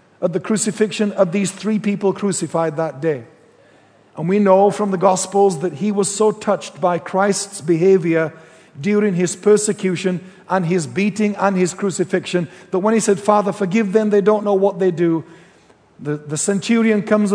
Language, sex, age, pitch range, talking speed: English, male, 50-69, 185-210 Hz, 175 wpm